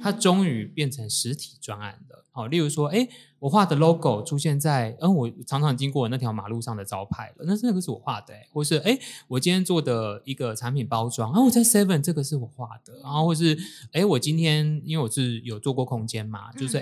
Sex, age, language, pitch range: male, 20-39, Chinese, 120-170 Hz